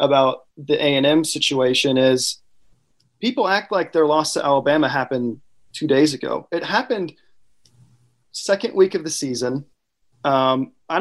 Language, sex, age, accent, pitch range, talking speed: English, male, 30-49, American, 140-180 Hz, 135 wpm